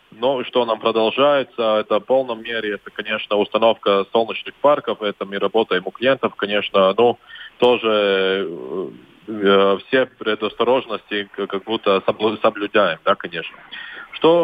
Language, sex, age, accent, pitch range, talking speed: Russian, male, 20-39, native, 105-125 Hz, 130 wpm